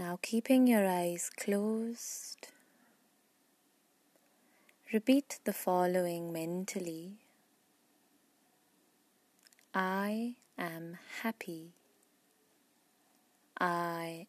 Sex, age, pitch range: female, 20-39, 175-260 Hz